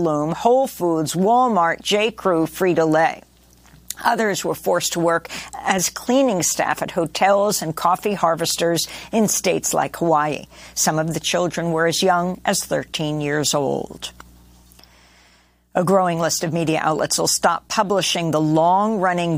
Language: English